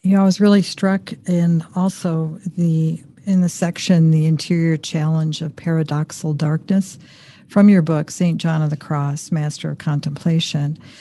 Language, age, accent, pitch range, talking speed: English, 50-69, American, 155-185 Hz, 165 wpm